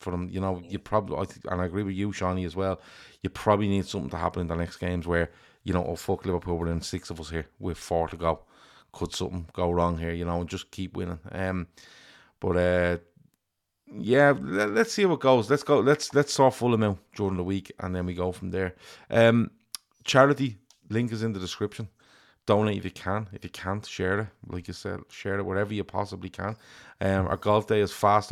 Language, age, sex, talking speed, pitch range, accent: English, 30-49, male, 230 wpm, 90-105 Hz, Irish